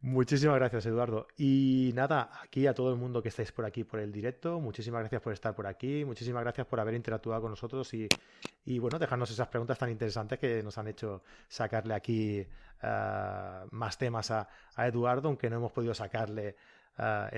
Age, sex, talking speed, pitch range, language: 30-49, male, 195 wpm, 110-140 Hz, Spanish